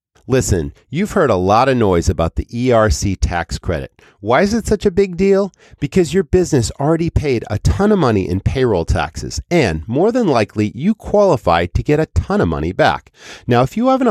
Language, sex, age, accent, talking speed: English, male, 40-59, American, 205 wpm